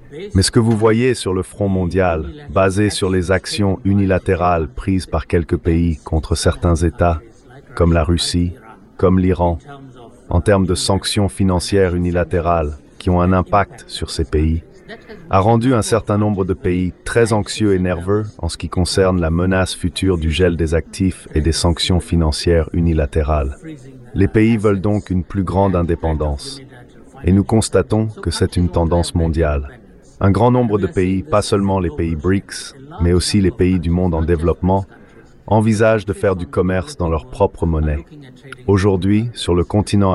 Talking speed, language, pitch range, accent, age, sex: 170 wpm, French, 85-100 Hz, French, 30-49, male